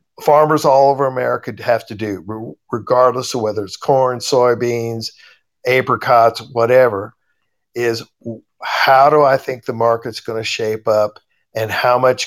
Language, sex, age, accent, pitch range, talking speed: English, male, 50-69, American, 115-145 Hz, 140 wpm